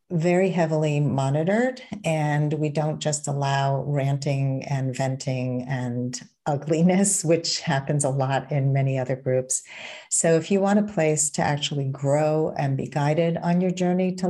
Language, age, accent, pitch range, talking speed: English, 50-69, American, 145-185 Hz, 155 wpm